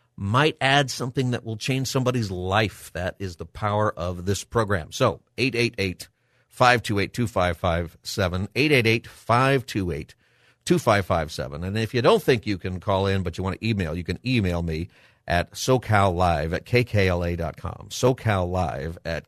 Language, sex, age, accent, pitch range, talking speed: English, male, 50-69, American, 95-120 Hz, 130 wpm